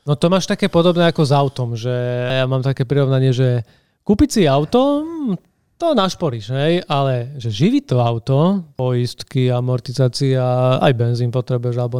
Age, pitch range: 30-49, 130-155 Hz